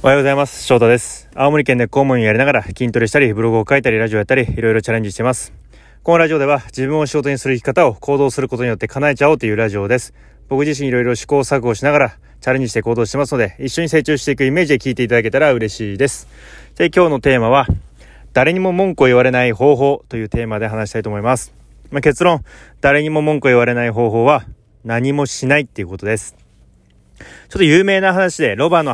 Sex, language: male, Japanese